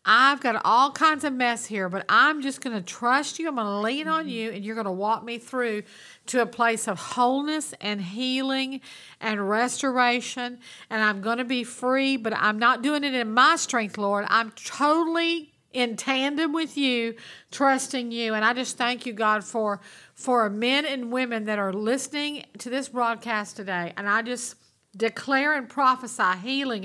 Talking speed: 190 wpm